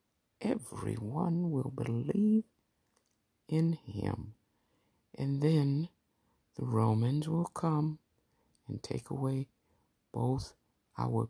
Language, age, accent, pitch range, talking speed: English, 60-79, American, 120-155 Hz, 85 wpm